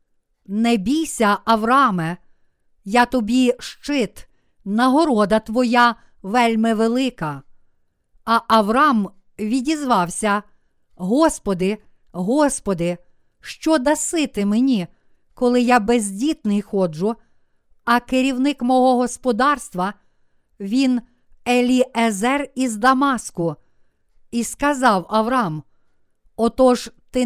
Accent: native